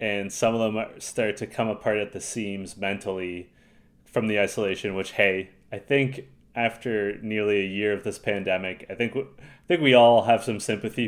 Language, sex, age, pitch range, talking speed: English, male, 30-49, 95-135 Hz, 185 wpm